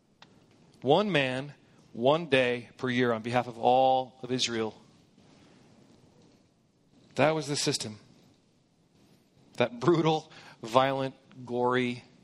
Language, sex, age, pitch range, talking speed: English, male, 40-59, 135-195 Hz, 100 wpm